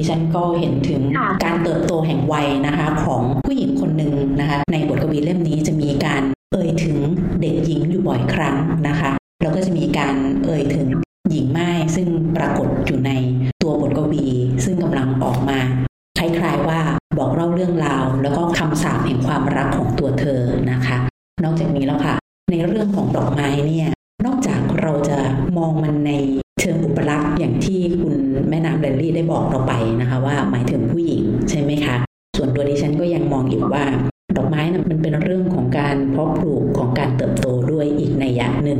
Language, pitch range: Thai, 140-165 Hz